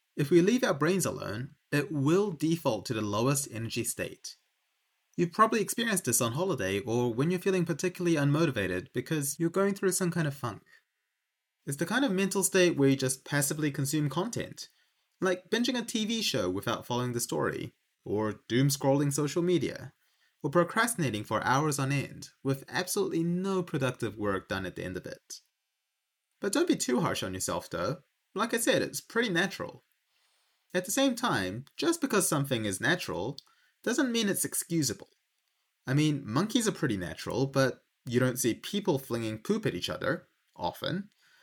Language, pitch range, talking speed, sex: English, 130-185 Hz, 175 wpm, male